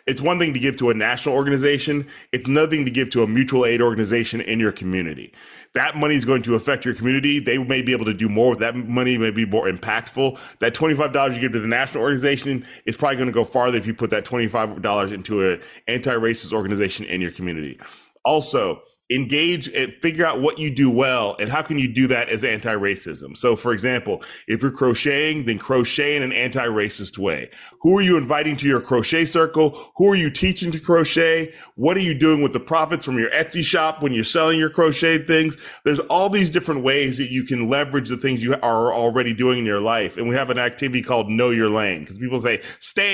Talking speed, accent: 225 wpm, American